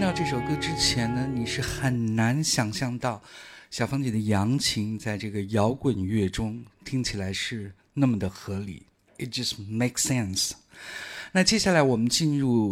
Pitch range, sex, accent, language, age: 100-135 Hz, male, native, Chinese, 50-69